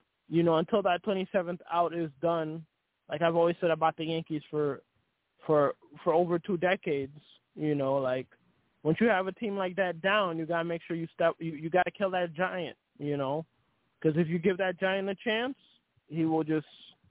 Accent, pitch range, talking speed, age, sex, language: American, 155-180 Hz, 205 wpm, 20-39, male, English